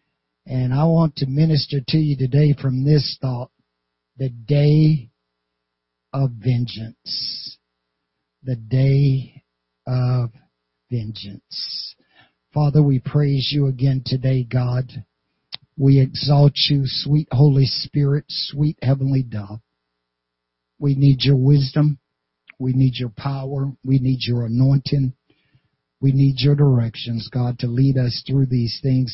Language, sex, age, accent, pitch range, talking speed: English, male, 50-69, American, 115-145 Hz, 120 wpm